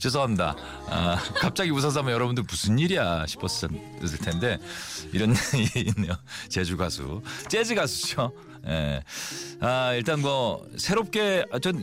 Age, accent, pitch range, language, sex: 40-59, native, 95-150 Hz, Korean, male